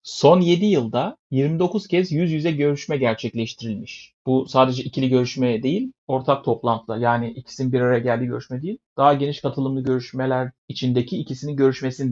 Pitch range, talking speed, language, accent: 125-160 Hz, 150 wpm, Turkish, native